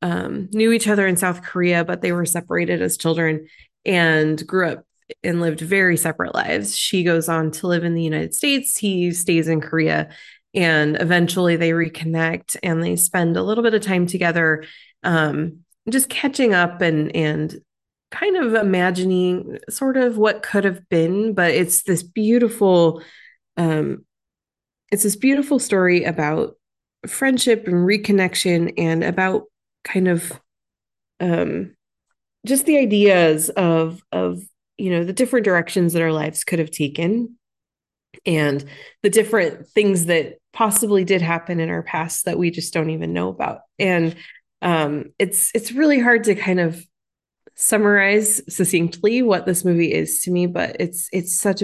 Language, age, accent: English, 30-49, American